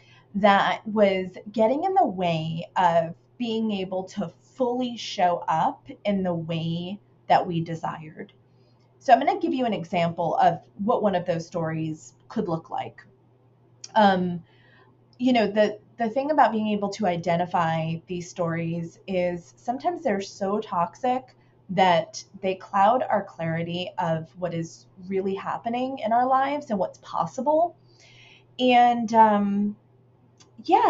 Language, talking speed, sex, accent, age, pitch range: English, 140 wpm, female, American, 20-39, 165-235 Hz